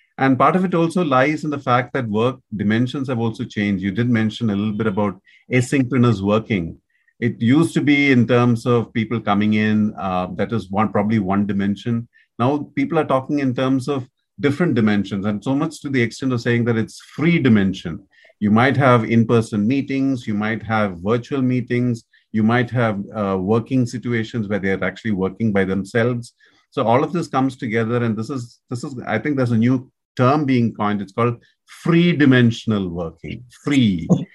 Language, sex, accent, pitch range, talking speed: English, male, Indian, 105-130 Hz, 195 wpm